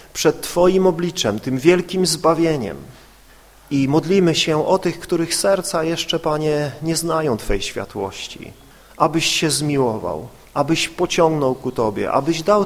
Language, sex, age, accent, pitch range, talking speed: Polish, male, 40-59, native, 125-165 Hz, 135 wpm